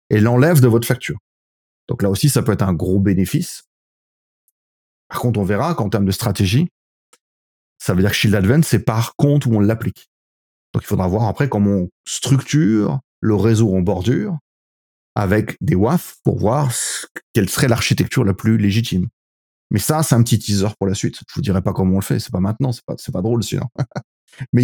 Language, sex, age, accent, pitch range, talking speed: French, male, 30-49, French, 95-125 Hz, 210 wpm